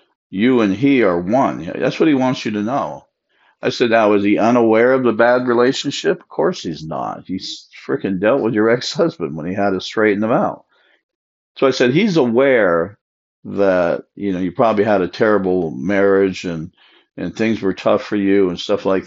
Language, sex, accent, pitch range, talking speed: English, male, American, 95-110 Hz, 200 wpm